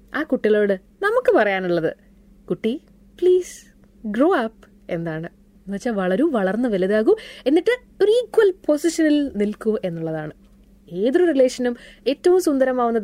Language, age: Malayalam, 20-39